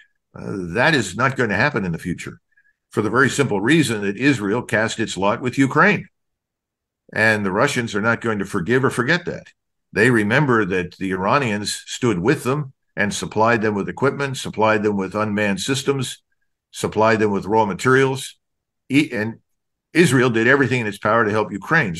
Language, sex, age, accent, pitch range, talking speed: English, male, 50-69, American, 105-145 Hz, 180 wpm